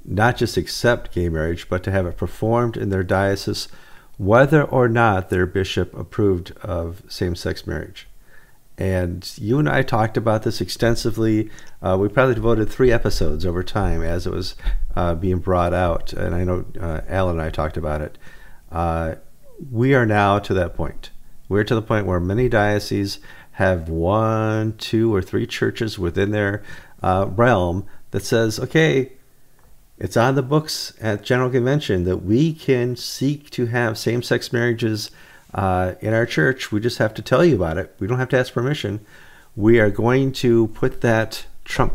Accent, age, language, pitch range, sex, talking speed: American, 50-69, English, 95-120 Hz, male, 175 wpm